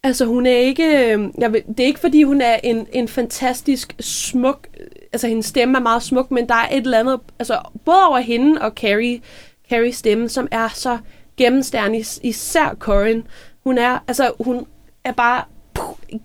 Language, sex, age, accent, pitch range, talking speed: Danish, female, 20-39, native, 205-255 Hz, 175 wpm